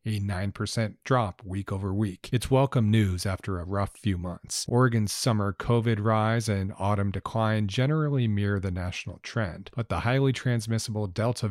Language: English